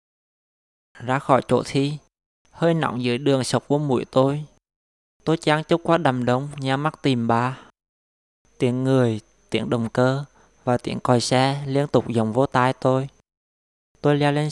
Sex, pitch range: male, 120-140 Hz